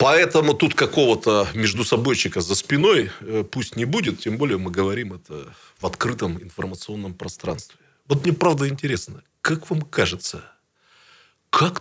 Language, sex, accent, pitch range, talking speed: Russian, male, native, 95-145 Hz, 135 wpm